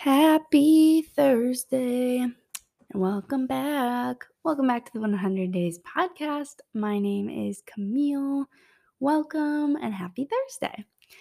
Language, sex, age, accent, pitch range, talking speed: English, female, 20-39, American, 200-265 Hz, 105 wpm